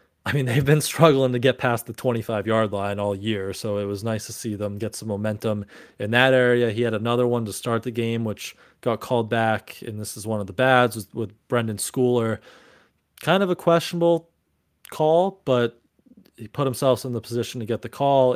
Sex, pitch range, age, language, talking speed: male, 105-125 Hz, 20-39, English, 210 wpm